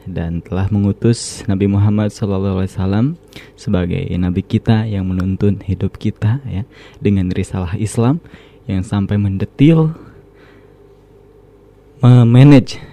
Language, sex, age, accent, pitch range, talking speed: Indonesian, male, 20-39, native, 95-115 Hz, 100 wpm